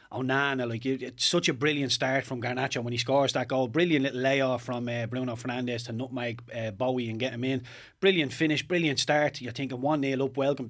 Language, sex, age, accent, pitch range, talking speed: English, male, 30-49, Irish, 125-140 Hz, 230 wpm